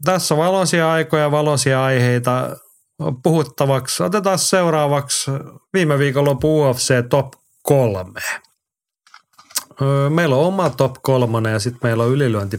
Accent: native